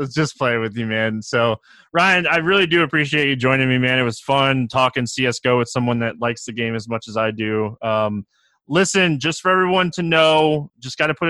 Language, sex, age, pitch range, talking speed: English, male, 20-39, 120-155 Hz, 230 wpm